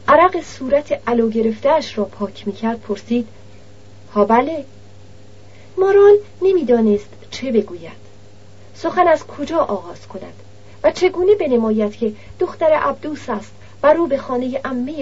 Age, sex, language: 40-59, female, Persian